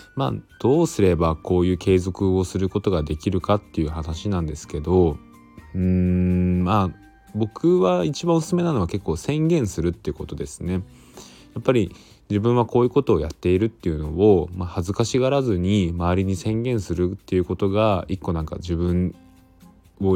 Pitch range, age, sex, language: 80-100 Hz, 20-39, male, Japanese